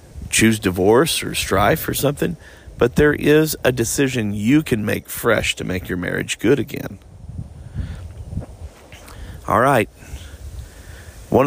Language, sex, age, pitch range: English, male, 40-59, 95-135 Hz